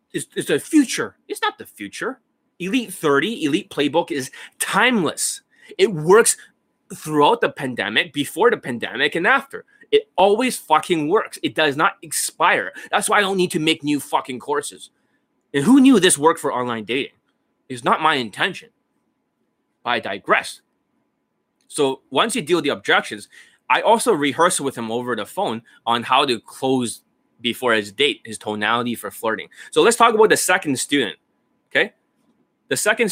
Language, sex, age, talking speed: English, male, 20-39, 165 wpm